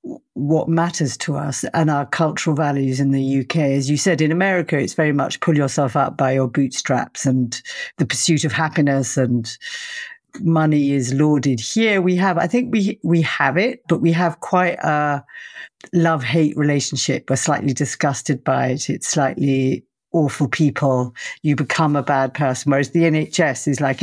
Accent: British